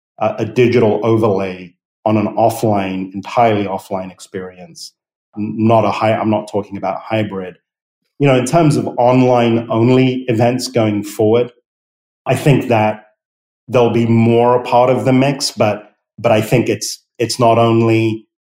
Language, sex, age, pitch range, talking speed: English, male, 40-59, 100-115 Hz, 155 wpm